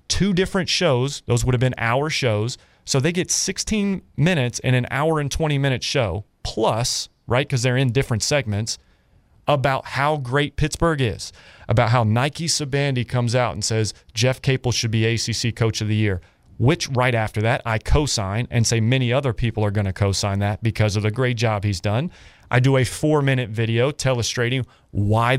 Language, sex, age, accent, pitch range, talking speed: English, male, 30-49, American, 110-135 Hz, 190 wpm